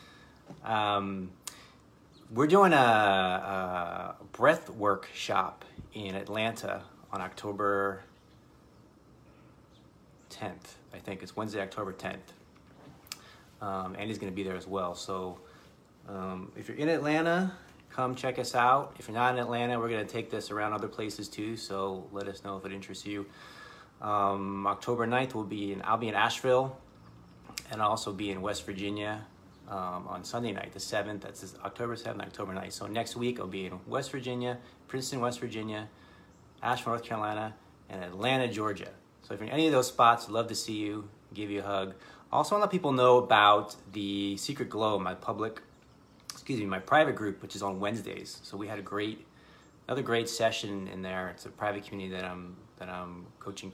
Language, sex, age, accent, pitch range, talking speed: English, male, 30-49, American, 95-115 Hz, 180 wpm